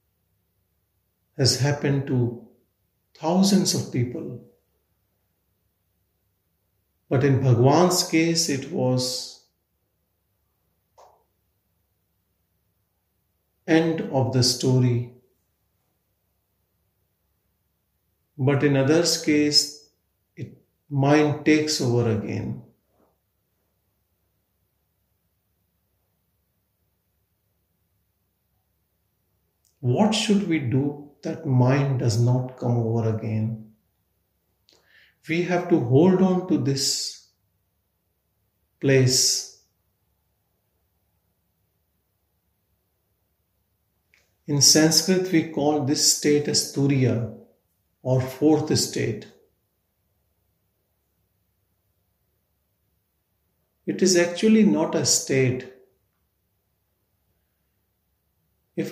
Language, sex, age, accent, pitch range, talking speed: English, male, 50-69, Indian, 90-135 Hz, 65 wpm